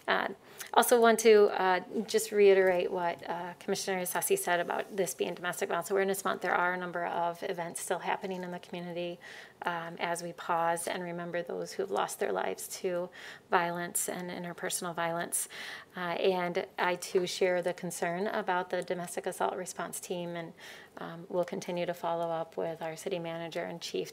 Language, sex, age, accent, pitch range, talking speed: English, female, 30-49, American, 175-200 Hz, 180 wpm